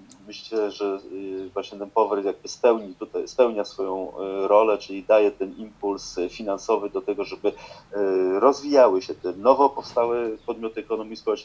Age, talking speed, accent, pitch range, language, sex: 30-49, 135 wpm, native, 100-120 Hz, Polish, male